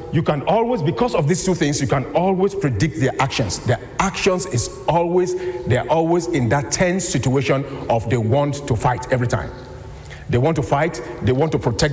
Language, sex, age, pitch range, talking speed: English, male, 50-69, 125-165 Hz, 200 wpm